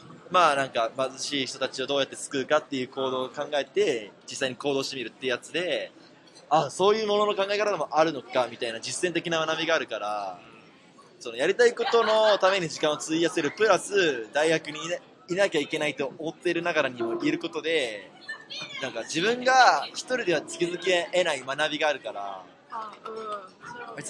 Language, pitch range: Japanese, 140-205 Hz